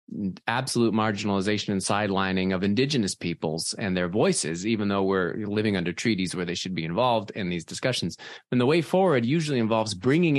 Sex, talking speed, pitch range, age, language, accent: male, 180 wpm, 100-155 Hz, 20-39, English, American